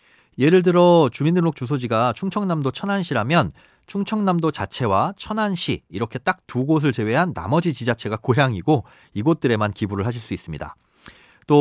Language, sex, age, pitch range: Korean, male, 40-59, 115-170 Hz